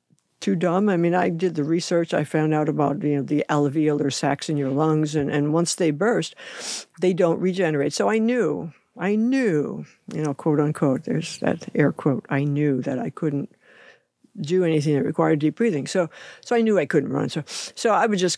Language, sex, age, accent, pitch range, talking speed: English, female, 60-79, American, 155-225 Hz, 210 wpm